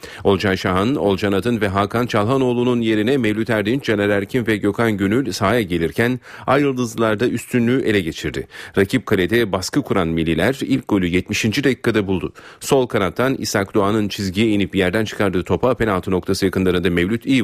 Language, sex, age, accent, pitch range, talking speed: Turkish, male, 40-59, native, 95-120 Hz, 155 wpm